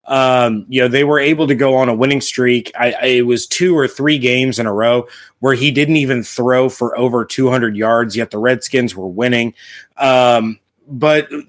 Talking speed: 205 wpm